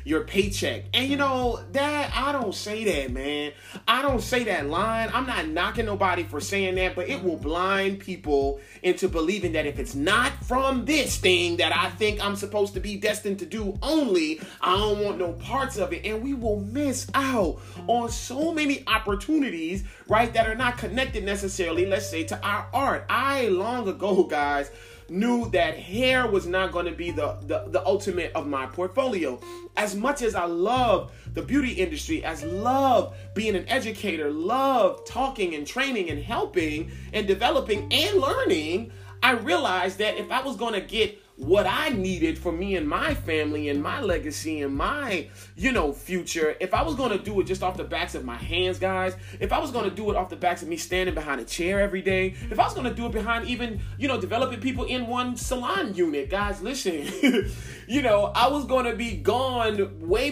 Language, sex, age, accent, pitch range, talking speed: English, male, 30-49, American, 175-250 Hz, 200 wpm